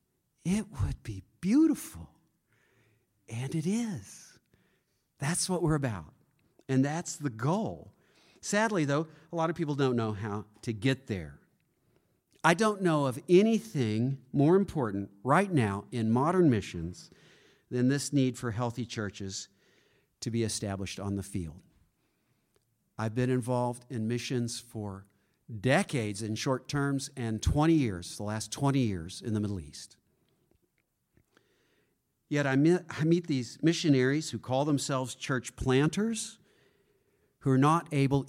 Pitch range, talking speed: 110-155 Hz, 135 wpm